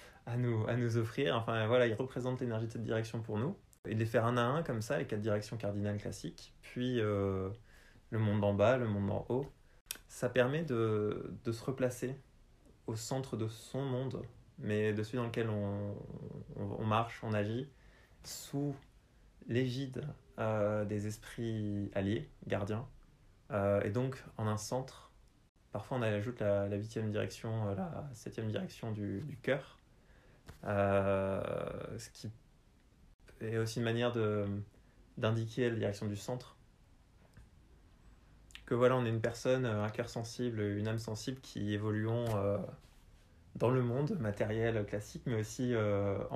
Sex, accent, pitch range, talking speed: male, French, 105-125 Hz, 155 wpm